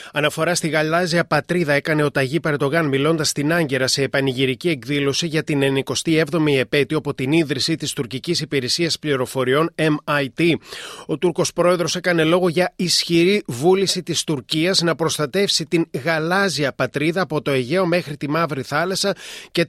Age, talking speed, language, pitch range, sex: 30-49, 150 wpm, Greek, 145-185 Hz, male